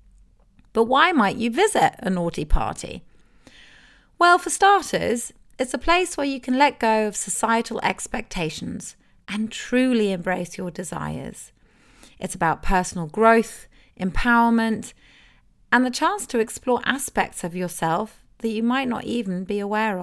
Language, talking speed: English, 140 wpm